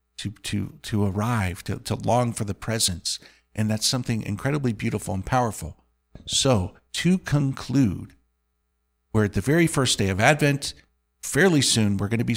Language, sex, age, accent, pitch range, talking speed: English, male, 50-69, American, 85-120 Hz, 165 wpm